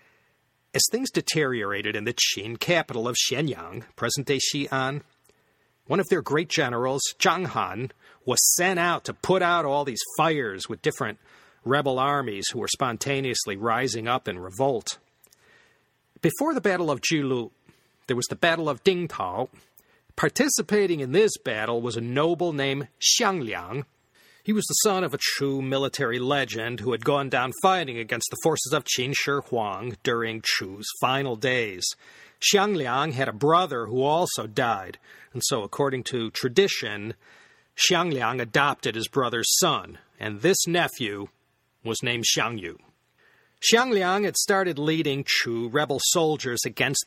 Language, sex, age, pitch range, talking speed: English, male, 40-59, 120-160 Hz, 150 wpm